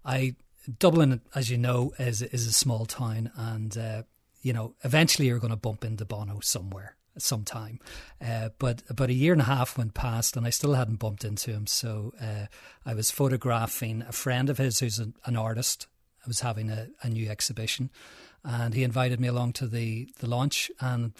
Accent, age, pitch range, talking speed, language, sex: Irish, 40-59, 115-130 Hz, 200 wpm, English, male